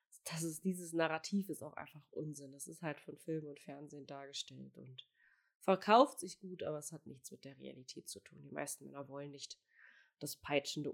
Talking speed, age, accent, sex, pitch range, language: 185 wpm, 20-39, German, female, 150-210 Hz, German